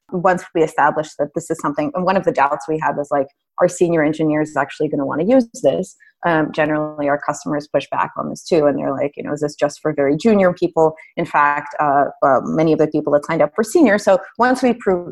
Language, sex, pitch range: English, female, 145-175 Hz